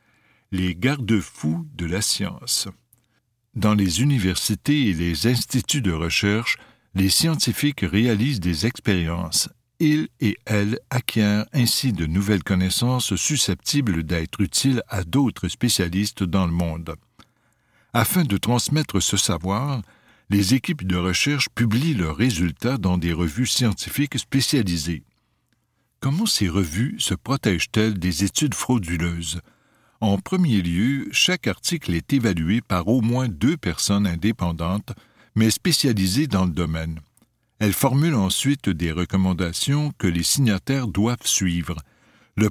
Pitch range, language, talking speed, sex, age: 90-125 Hz, French, 125 wpm, male, 60-79